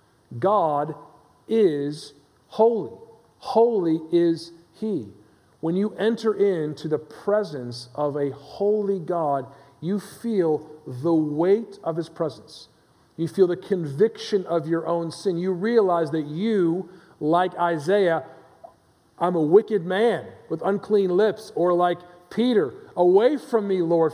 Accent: American